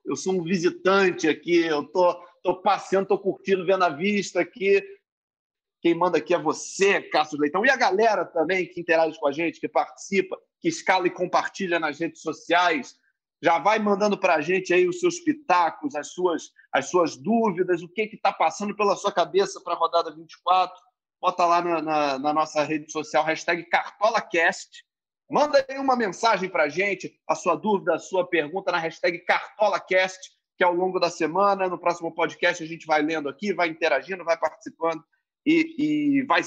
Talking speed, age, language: 190 wpm, 40-59, Portuguese